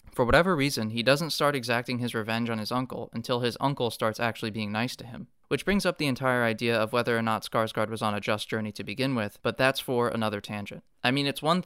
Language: English